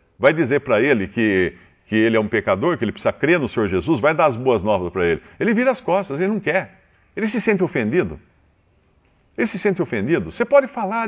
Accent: Brazilian